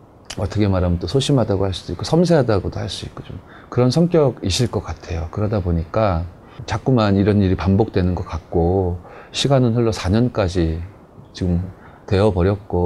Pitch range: 90-130 Hz